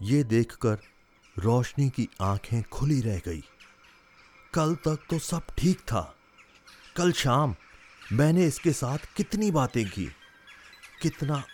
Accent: native